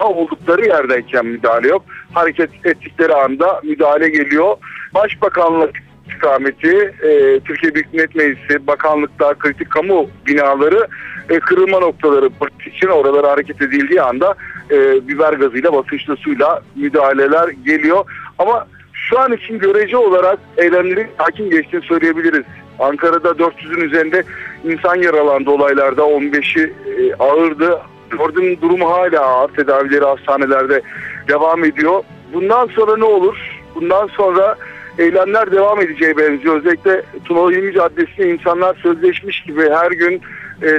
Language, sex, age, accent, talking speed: Turkish, male, 60-79, native, 120 wpm